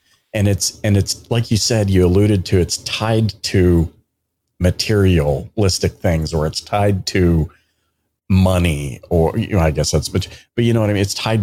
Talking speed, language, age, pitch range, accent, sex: 185 wpm, English, 40-59, 85-110 Hz, American, male